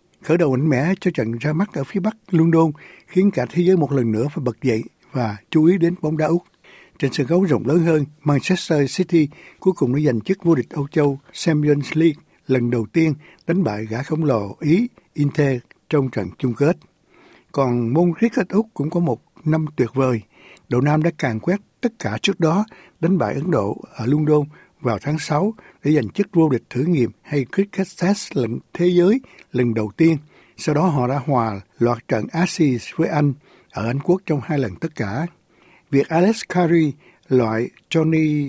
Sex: male